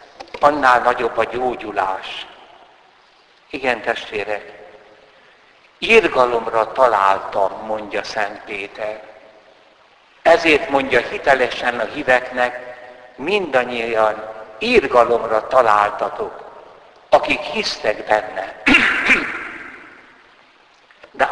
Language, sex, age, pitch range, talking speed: Hungarian, male, 60-79, 110-135 Hz, 70 wpm